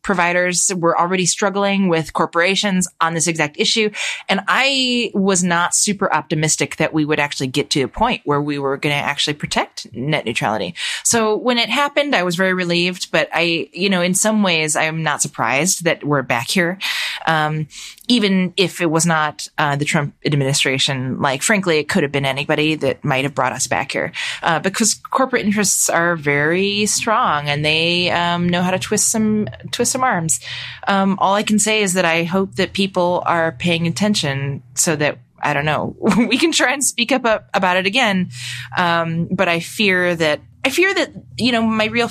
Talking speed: 195 wpm